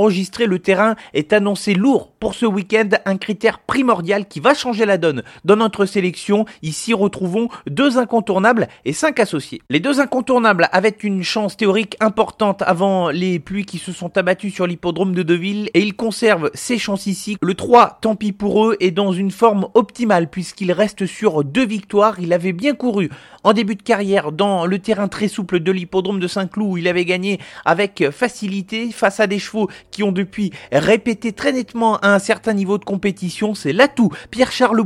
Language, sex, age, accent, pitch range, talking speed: French, male, 30-49, French, 190-225 Hz, 190 wpm